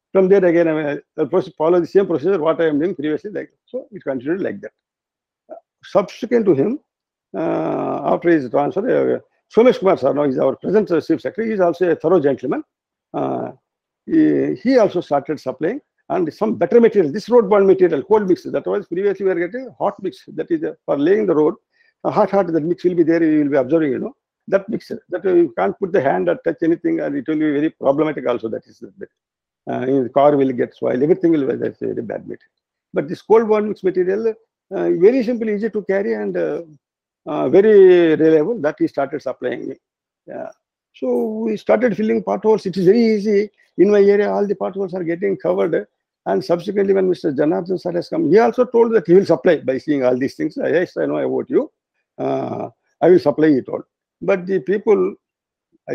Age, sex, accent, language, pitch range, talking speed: 50-69, male, Indian, English, 165-235 Hz, 215 wpm